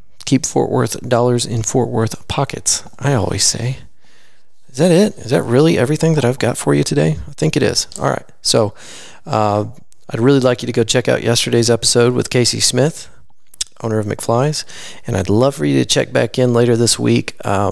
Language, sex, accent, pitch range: English, male, American, 110-135 Hz